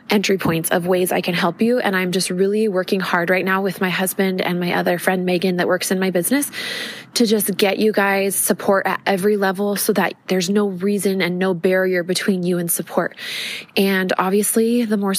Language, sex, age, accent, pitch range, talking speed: English, female, 20-39, American, 185-215 Hz, 215 wpm